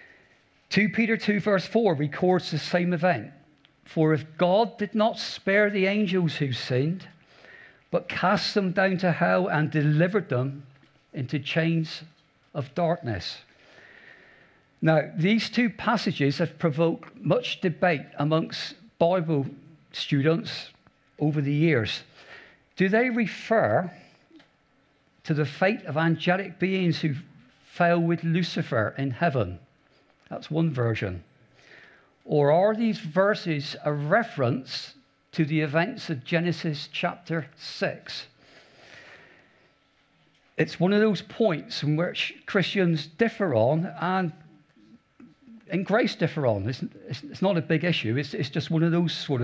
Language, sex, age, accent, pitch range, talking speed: English, male, 50-69, British, 150-190 Hz, 125 wpm